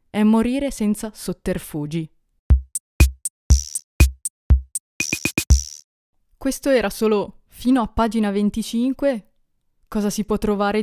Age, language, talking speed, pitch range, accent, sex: 20-39, Italian, 85 wpm, 175-215 Hz, native, female